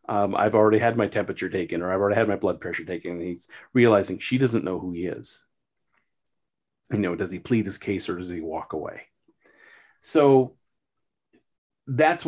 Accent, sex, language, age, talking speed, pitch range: American, male, English, 30-49, 190 wpm, 95-125 Hz